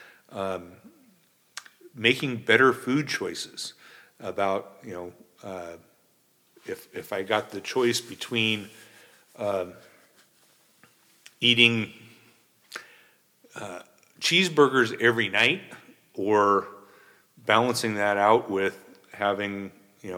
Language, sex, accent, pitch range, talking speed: English, male, American, 95-115 Hz, 85 wpm